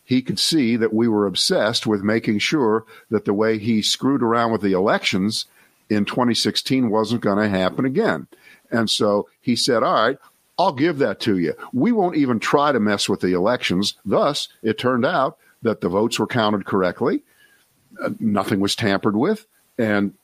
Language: English